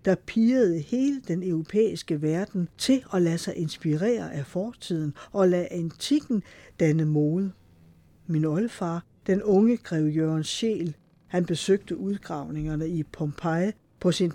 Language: Danish